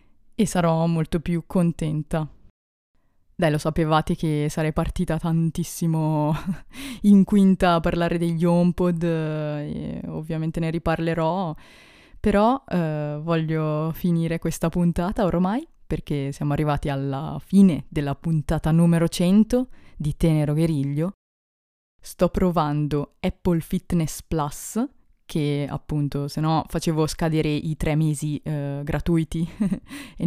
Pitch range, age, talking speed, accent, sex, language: 150-175 Hz, 20-39, 115 wpm, native, female, Italian